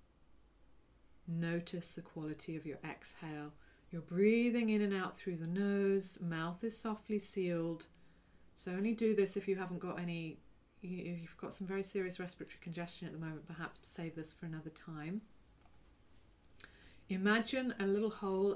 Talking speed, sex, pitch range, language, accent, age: 155 wpm, female, 155-195 Hz, English, British, 40-59